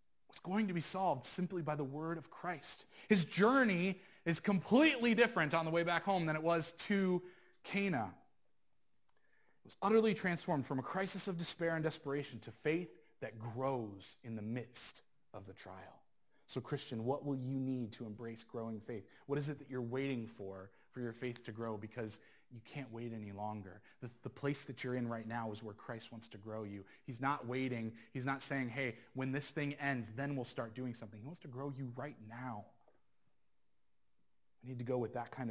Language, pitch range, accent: English, 110-145 Hz, American